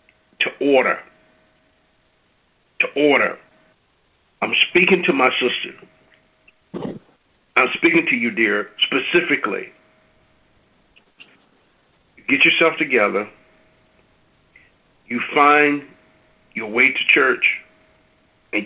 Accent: American